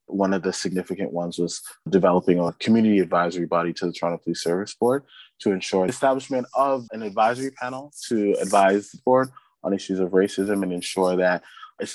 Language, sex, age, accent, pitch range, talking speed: English, male, 20-39, American, 90-105 Hz, 185 wpm